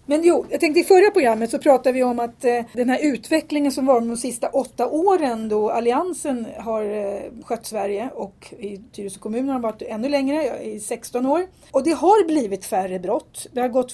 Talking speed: 200 wpm